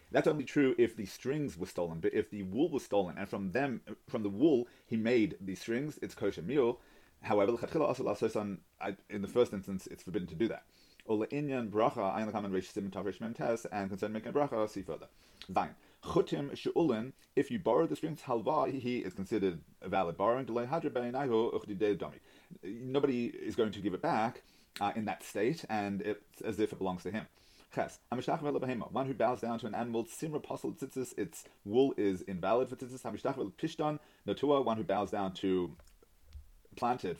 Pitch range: 95-130 Hz